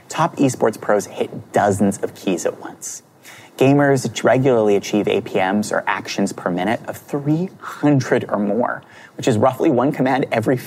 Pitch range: 120-170 Hz